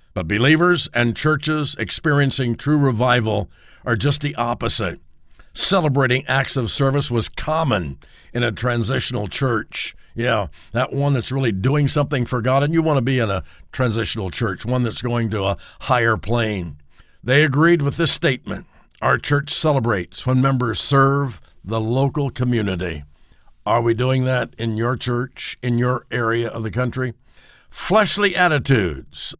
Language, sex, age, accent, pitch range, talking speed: English, male, 60-79, American, 115-145 Hz, 155 wpm